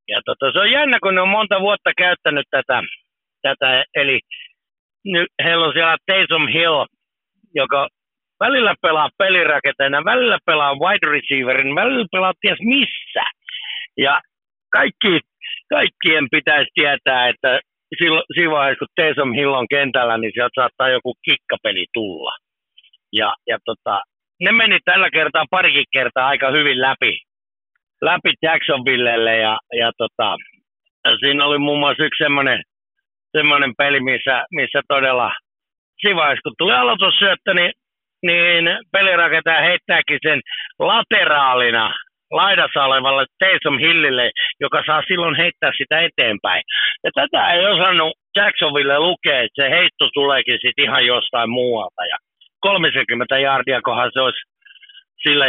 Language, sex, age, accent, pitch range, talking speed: Finnish, male, 60-79, native, 135-195 Hz, 130 wpm